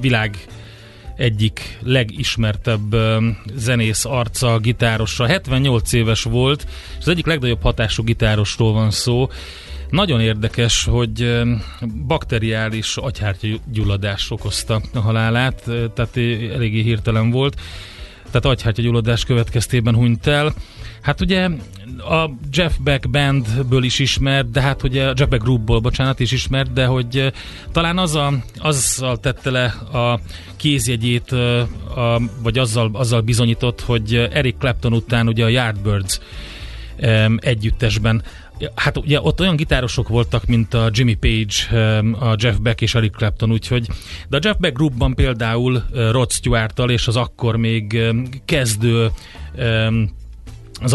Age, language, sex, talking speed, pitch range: 30-49, Hungarian, male, 125 wpm, 110-125 Hz